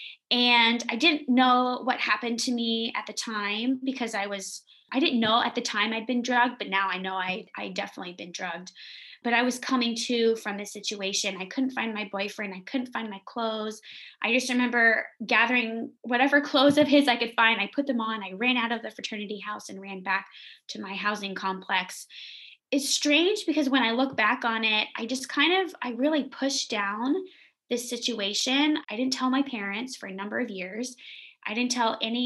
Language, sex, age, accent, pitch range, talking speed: English, female, 20-39, American, 210-255 Hz, 210 wpm